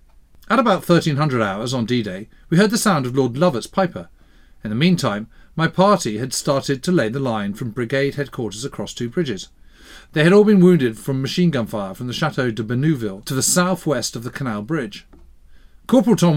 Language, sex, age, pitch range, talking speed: English, male, 40-59, 110-175 Hz, 200 wpm